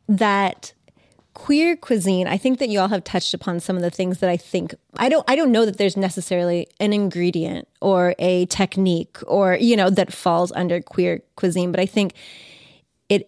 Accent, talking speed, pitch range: American, 195 wpm, 175-195 Hz